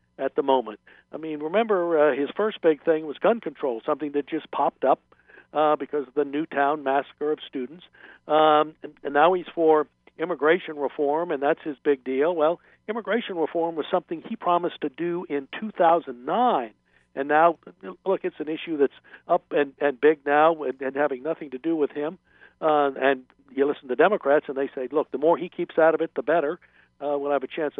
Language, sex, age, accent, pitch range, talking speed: English, male, 60-79, American, 140-165 Hz, 210 wpm